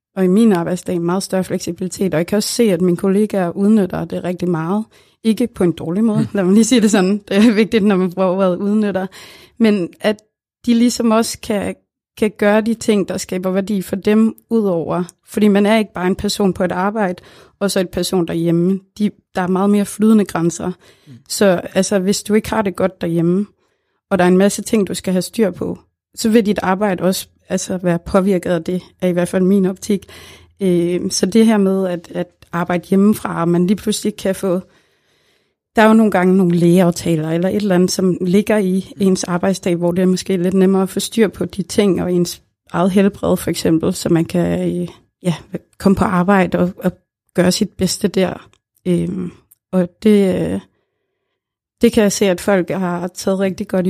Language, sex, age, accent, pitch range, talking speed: Danish, female, 30-49, native, 180-210 Hz, 205 wpm